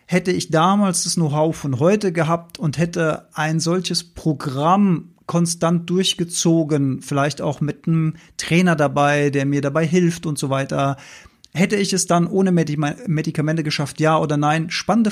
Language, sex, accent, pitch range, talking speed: German, male, German, 145-185 Hz, 155 wpm